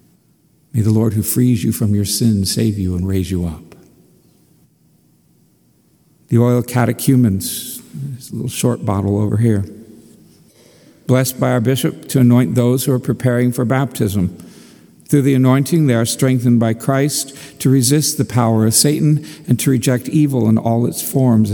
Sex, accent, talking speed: male, American, 165 wpm